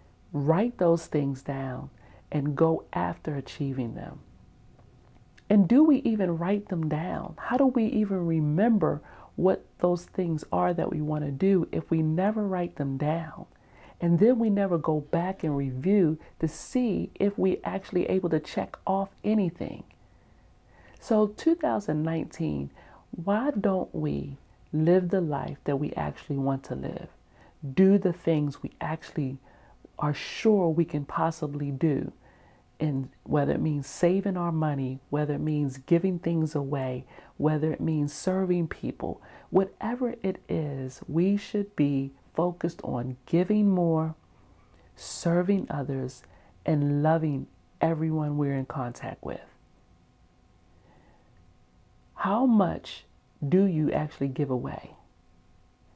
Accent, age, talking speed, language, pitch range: American, 40-59, 130 wpm, English, 135-185 Hz